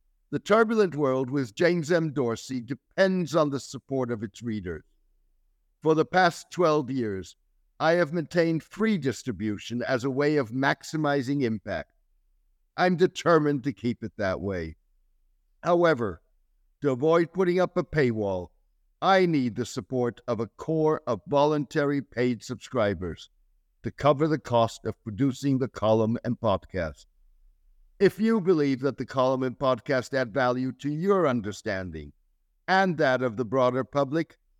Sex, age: male, 60-79